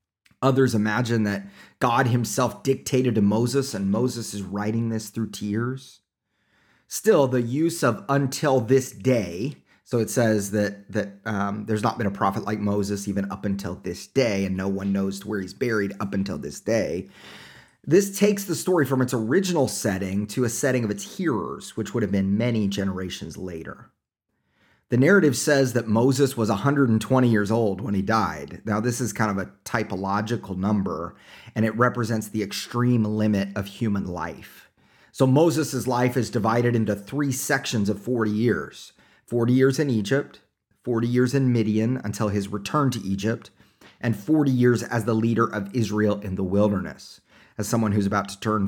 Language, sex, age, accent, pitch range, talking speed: English, male, 30-49, American, 100-135 Hz, 175 wpm